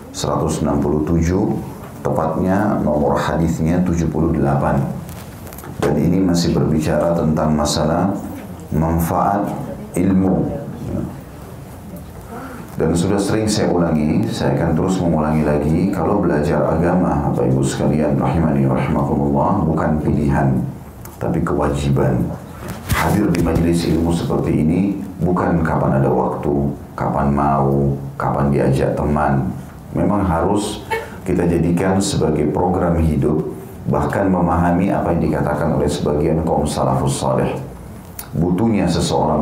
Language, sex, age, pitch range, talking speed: Indonesian, male, 40-59, 75-90 Hz, 105 wpm